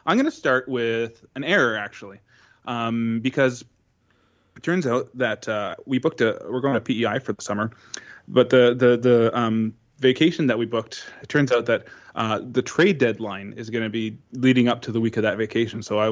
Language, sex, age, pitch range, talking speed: English, male, 20-39, 110-125 Hz, 210 wpm